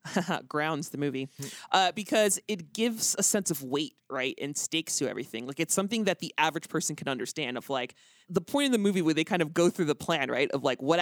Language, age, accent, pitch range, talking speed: English, 30-49, American, 150-195 Hz, 240 wpm